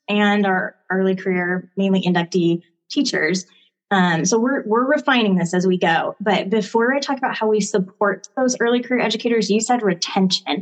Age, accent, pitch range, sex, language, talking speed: 20-39, American, 185-235 Hz, female, English, 175 wpm